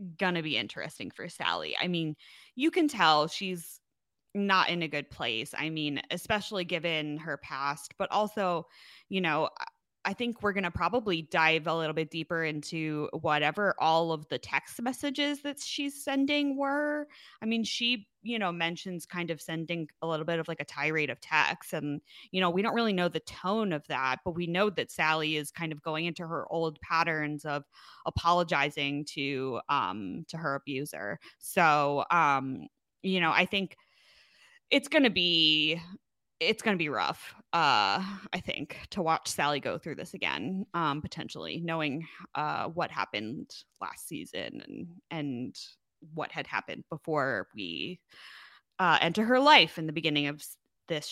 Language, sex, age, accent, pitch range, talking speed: English, female, 20-39, American, 155-200 Hz, 170 wpm